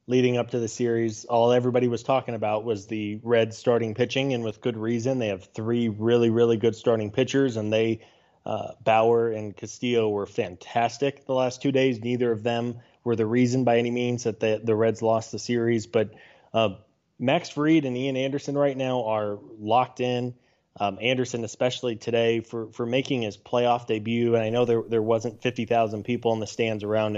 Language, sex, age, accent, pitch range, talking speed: English, male, 20-39, American, 110-125 Hz, 195 wpm